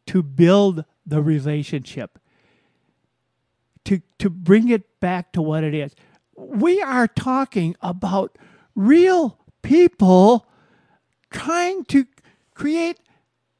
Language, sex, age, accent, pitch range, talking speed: English, male, 60-79, American, 190-305 Hz, 95 wpm